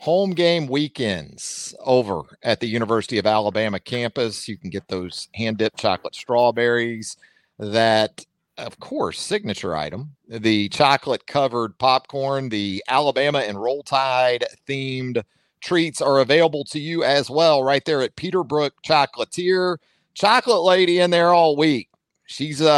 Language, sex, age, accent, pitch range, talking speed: English, male, 40-59, American, 115-155 Hz, 130 wpm